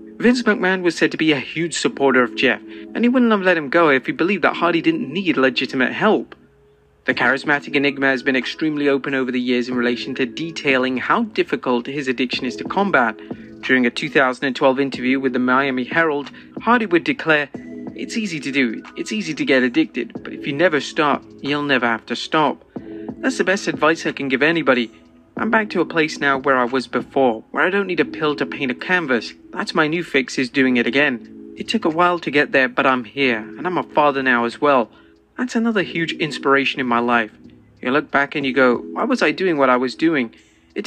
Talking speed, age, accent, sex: 225 wpm, 30-49, British, male